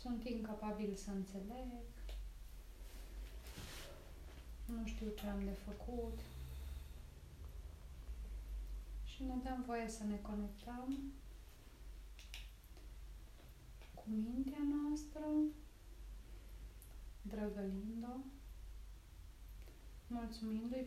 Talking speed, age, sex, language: 65 wpm, 30-49, female, Romanian